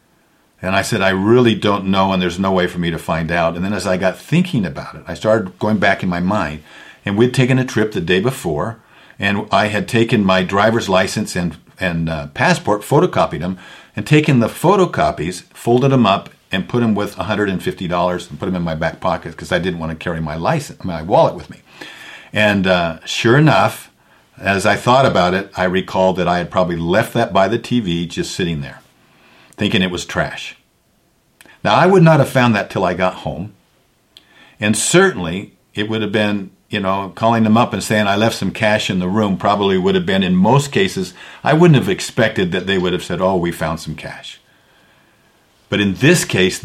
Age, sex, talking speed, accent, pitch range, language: 50-69, male, 210 wpm, American, 95-120 Hz, English